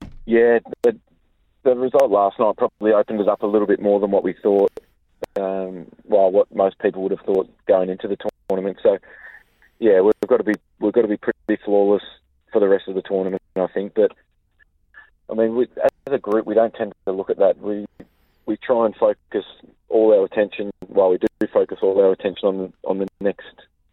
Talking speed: 210 wpm